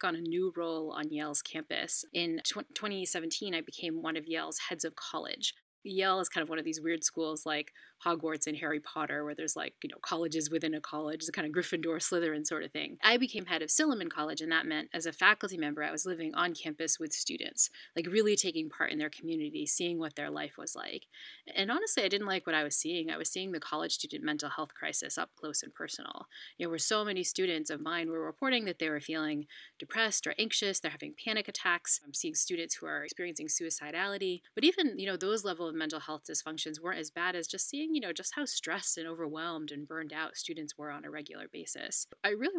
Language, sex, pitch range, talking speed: English, female, 155-190 Hz, 230 wpm